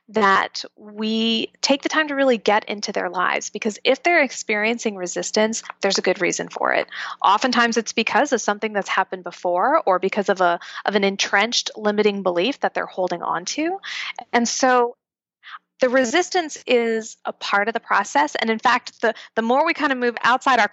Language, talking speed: English, 190 wpm